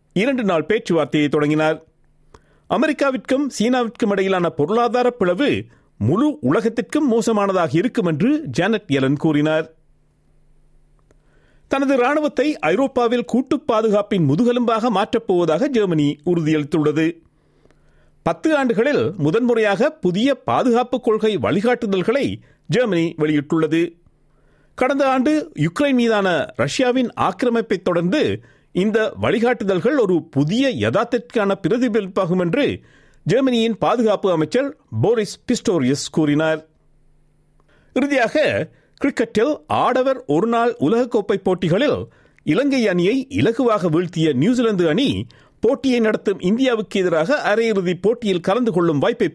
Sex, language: male, Tamil